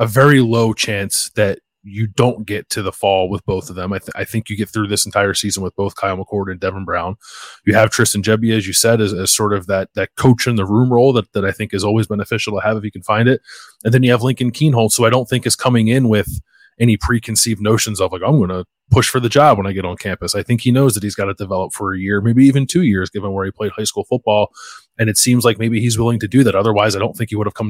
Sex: male